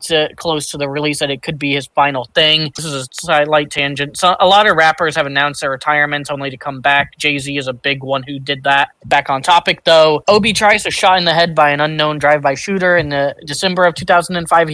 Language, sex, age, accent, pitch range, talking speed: English, male, 20-39, American, 140-165 Hz, 240 wpm